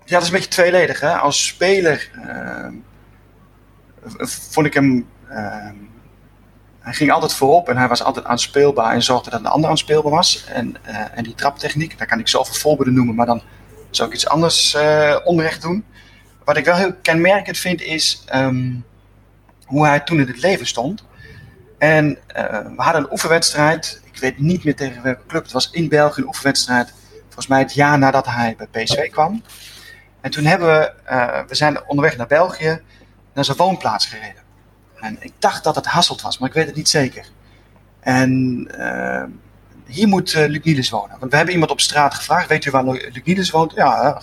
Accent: Dutch